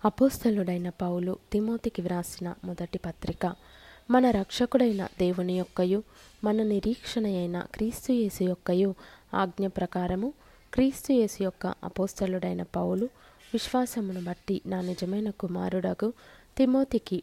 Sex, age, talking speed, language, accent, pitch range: female, 20-39, 80 wpm, Telugu, native, 185-220 Hz